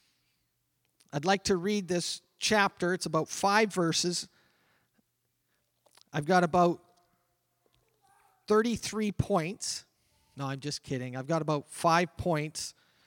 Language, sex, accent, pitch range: English, male, American, 160-220 Hz